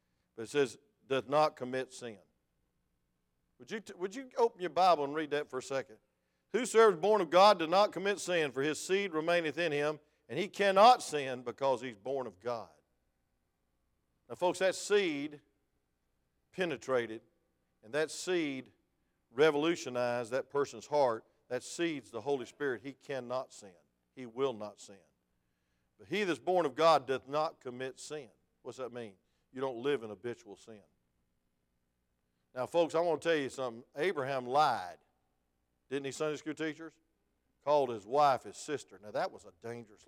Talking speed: 170 wpm